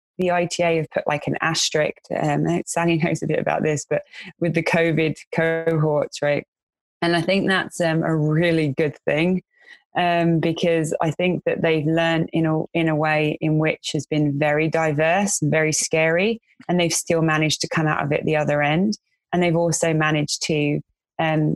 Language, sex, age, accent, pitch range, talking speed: English, female, 20-39, British, 155-180 Hz, 190 wpm